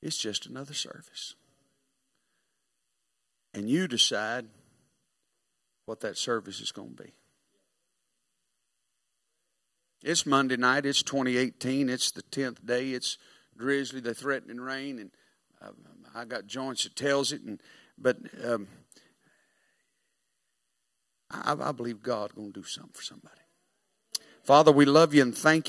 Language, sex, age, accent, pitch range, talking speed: English, male, 50-69, American, 130-165 Hz, 125 wpm